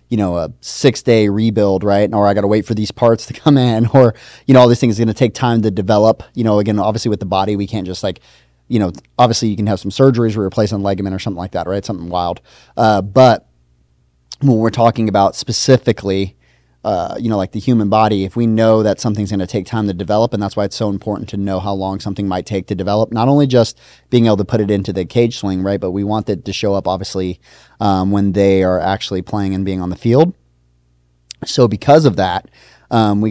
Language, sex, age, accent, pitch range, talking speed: English, male, 30-49, American, 95-115 Hz, 245 wpm